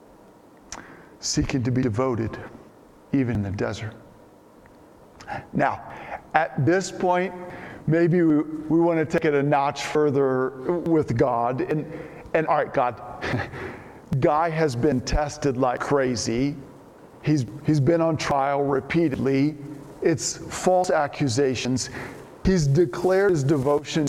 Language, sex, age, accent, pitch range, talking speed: English, male, 40-59, American, 140-175 Hz, 120 wpm